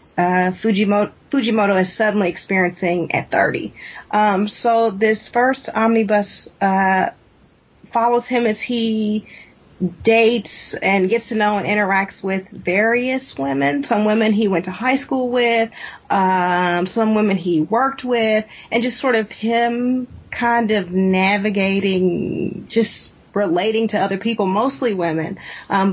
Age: 30-49